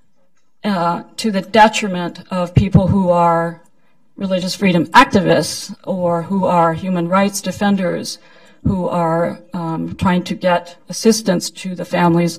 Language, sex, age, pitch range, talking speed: English, female, 50-69, 170-195 Hz, 130 wpm